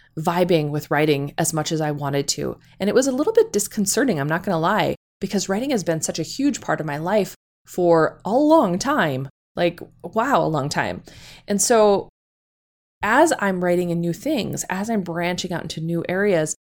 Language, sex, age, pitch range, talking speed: English, female, 20-39, 160-210 Hz, 200 wpm